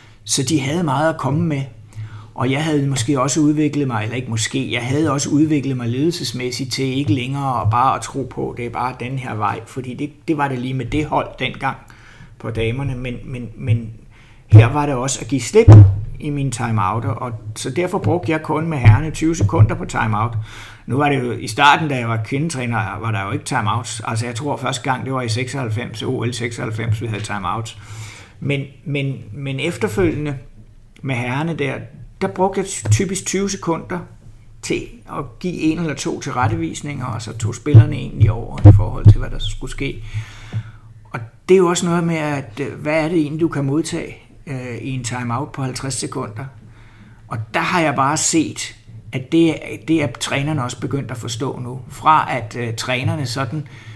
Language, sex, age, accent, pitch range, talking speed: Danish, male, 60-79, native, 115-145 Hz, 200 wpm